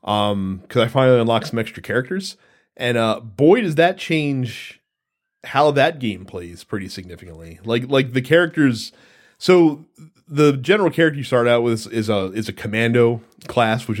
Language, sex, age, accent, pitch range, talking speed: English, male, 30-49, American, 105-130 Hz, 170 wpm